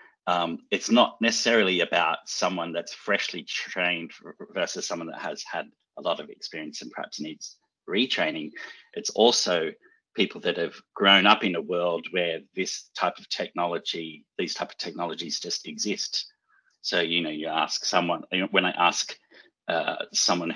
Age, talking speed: 30-49, 160 wpm